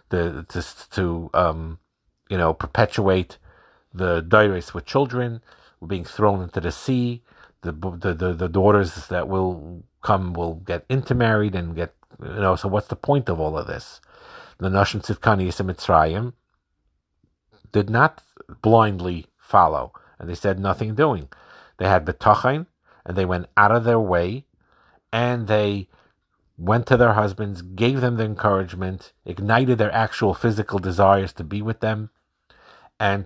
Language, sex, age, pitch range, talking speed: English, male, 50-69, 90-115 Hz, 150 wpm